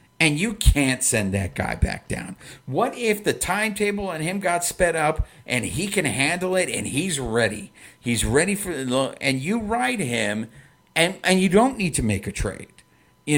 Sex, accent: male, American